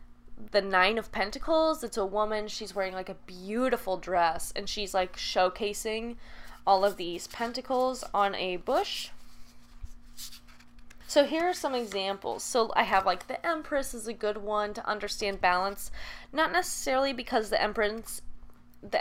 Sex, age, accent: female, 10-29, American